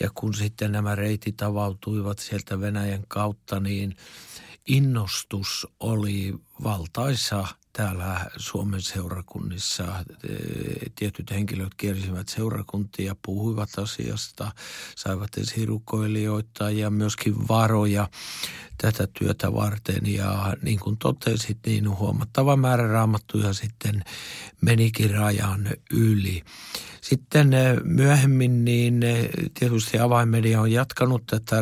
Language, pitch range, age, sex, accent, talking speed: Finnish, 105-115 Hz, 60-79, male, native, 95 wpm